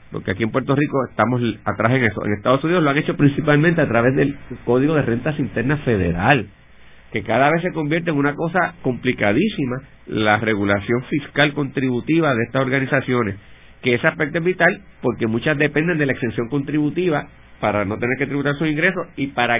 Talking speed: 185 wpm